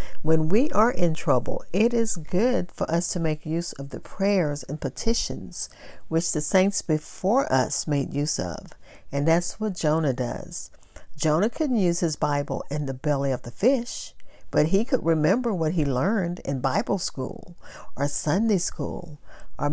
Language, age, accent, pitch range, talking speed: English, 50-69, American, 150-190 Hz, 170 wpm